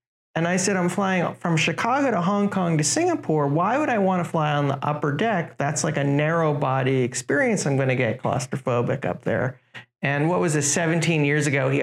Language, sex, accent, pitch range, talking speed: English, male, American, 130-180 Hz, 220 wpm